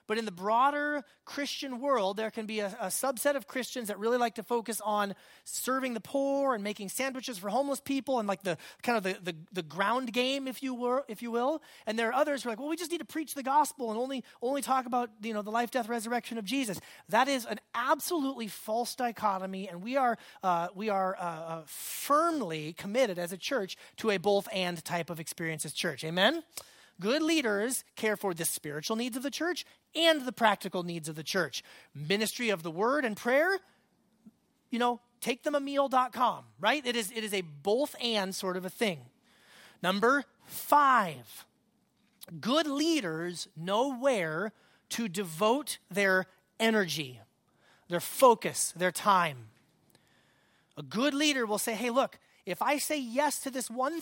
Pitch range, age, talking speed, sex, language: 190-265 Hz, 30-49, 185 wpm, male, English